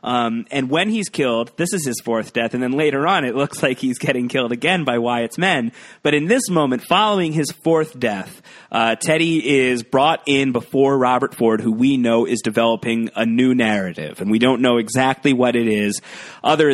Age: 30-49